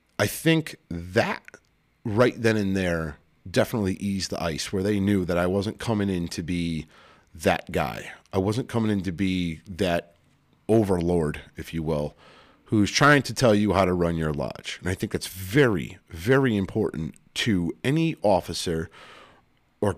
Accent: American